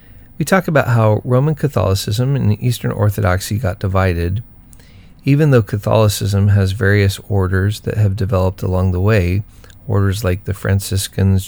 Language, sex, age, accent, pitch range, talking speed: English, male, 40-59, American, 95-115 Hz, 140 wpm